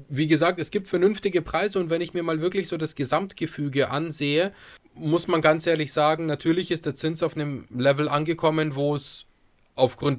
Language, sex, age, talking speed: German, male, 30-49, 190 wpm